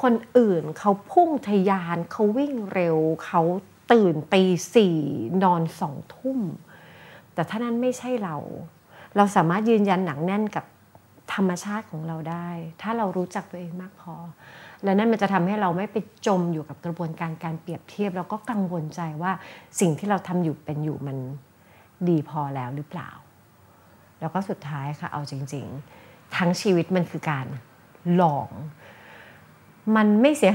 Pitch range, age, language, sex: 160-205 Hz, 30-49, Thai, female